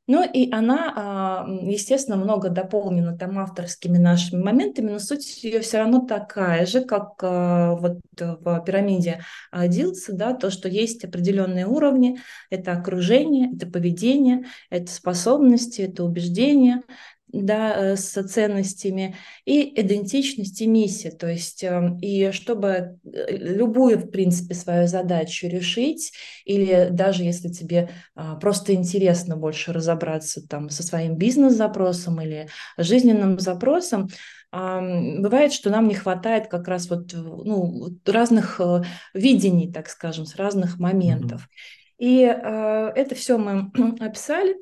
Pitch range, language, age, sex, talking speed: 180-235 Hz, Russian, 20-39, female, 115 wpm